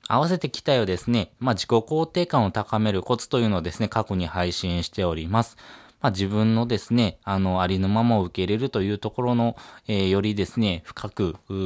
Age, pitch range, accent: 20-39, 95-120 Hz, native